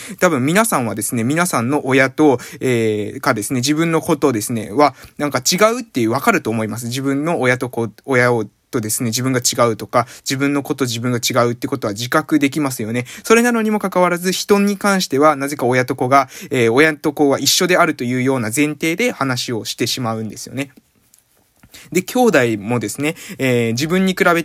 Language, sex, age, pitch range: Japanese, male, 20-39, 125-195 Hz